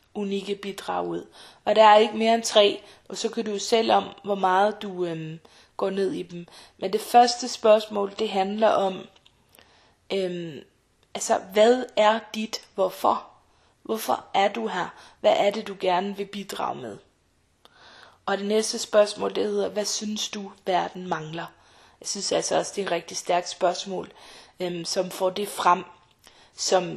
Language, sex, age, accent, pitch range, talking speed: Danish, female, 20-39, native, 180-220 Hz, 170 wpm